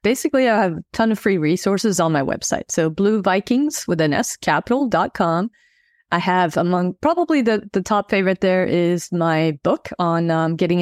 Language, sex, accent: English, female, American